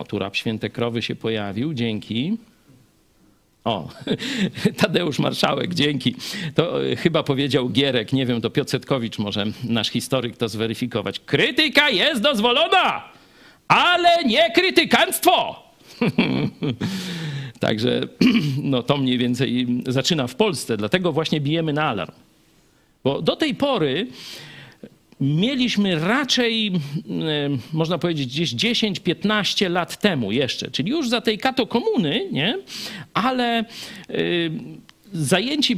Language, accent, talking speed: Polish, native, 110 wpm